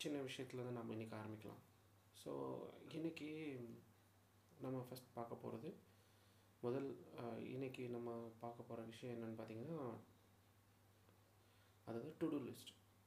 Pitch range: 110-130 Hz